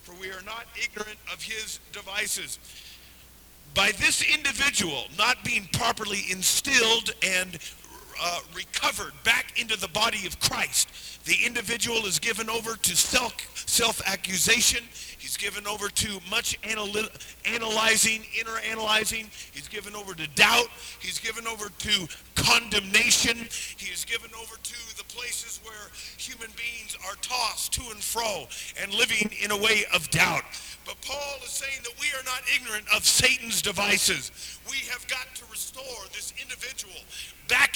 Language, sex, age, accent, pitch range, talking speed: English, male, 40-59, American, 190-230 Hz, 145 wpm